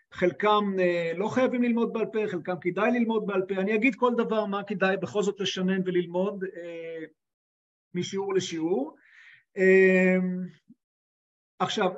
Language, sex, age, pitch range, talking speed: Hebrew, male, 50-69, 180-220 Hz, 120 wpm